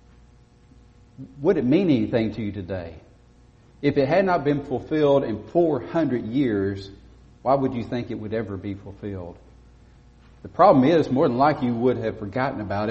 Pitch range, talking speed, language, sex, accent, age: 110-130 Hz, 165 wpm, English, male, American, 50-69